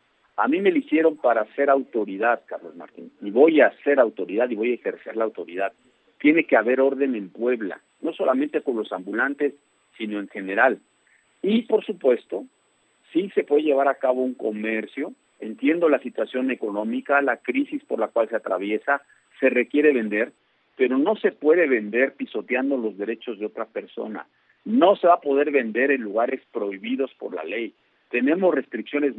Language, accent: Spanish, Mexican